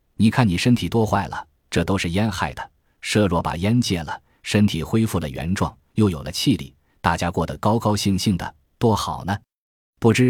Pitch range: 85-115 Hz